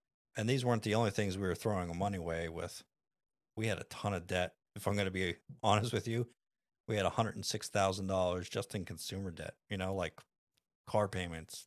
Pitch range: 95-105 Hz